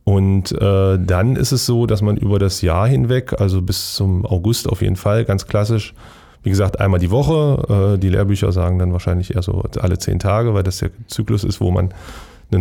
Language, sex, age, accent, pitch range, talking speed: German, male, 30-49, German, 95-115 Hz, 215 wpm